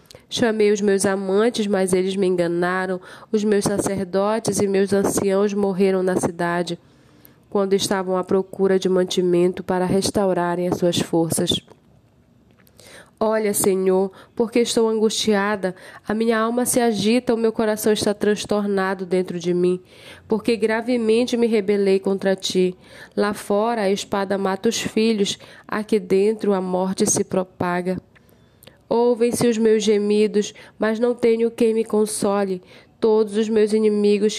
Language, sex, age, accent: Portuguese, female, 10-29, Brazilian